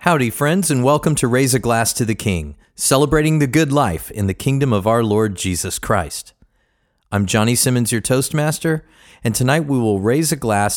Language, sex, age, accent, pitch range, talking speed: English, male, 40-59, American, 95-125 Hz, 195 wpm